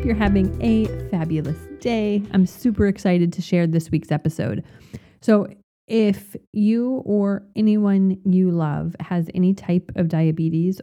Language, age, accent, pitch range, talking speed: English, 30-49, American, 160-190 Hz, 140 wpm